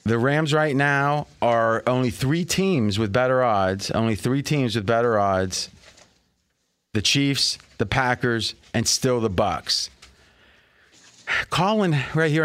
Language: English